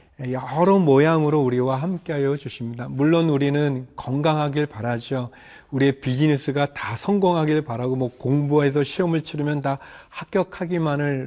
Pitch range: 125-155 Hz